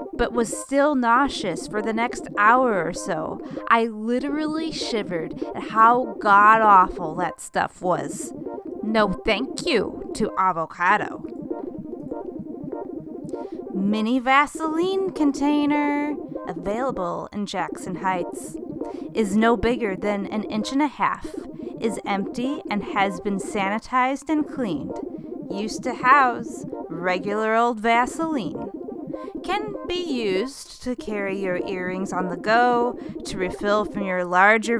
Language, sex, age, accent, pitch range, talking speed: English, female, 20-39, American, 200-290 Hz, 120 wpm